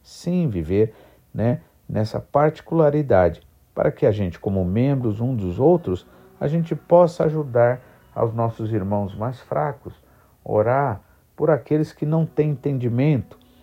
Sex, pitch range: male, 105-155 Hz